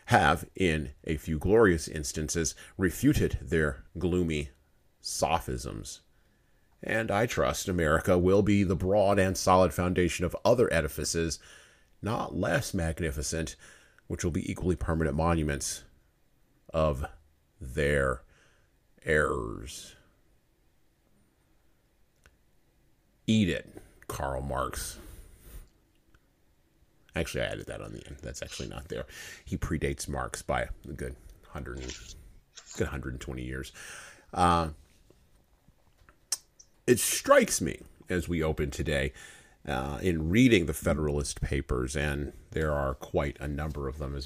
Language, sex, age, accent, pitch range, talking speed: English, male, 40-59, American, 70-85 Hz, 115 wpm